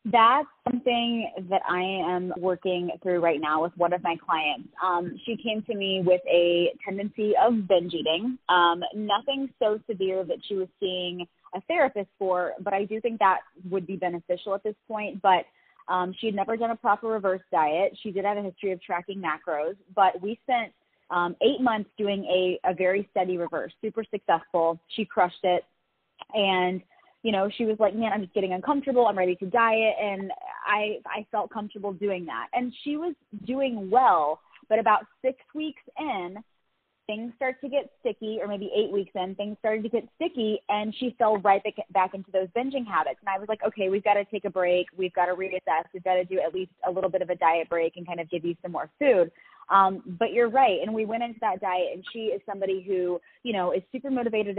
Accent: American